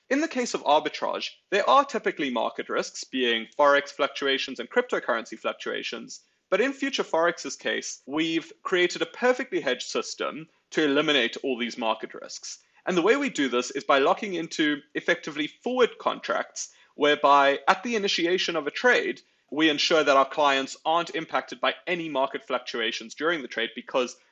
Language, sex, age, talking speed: English, male, 30-49, 170 wpm